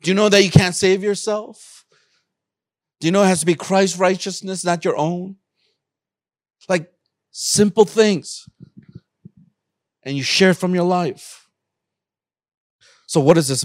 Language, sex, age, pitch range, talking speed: English, male, 40-59, 120-165 Hz, 145 wpm